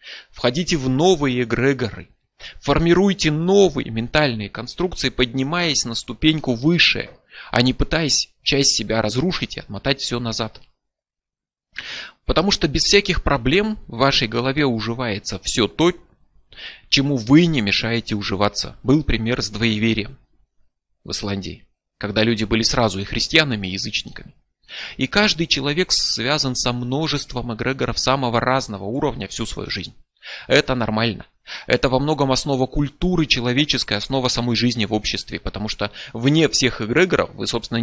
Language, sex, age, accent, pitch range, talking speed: Russian, male, 30-49, native, 115-150 Hz, 135 wpm